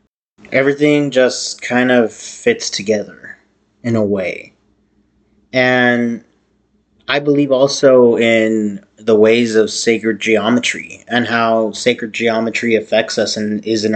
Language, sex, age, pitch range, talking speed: English, male, 30-49, 105-115 Hz, 120 wpm